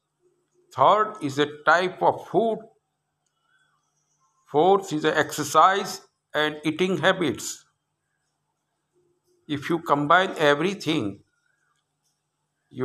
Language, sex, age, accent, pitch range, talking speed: English, male, 60-79, Indian, 135-190 Hz, 85 wpm